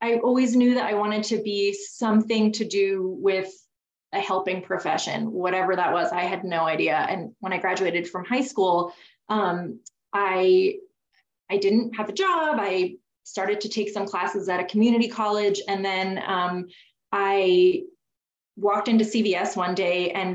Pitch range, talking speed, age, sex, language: 190-225 Hz, 165 wpm, 20-39, female, English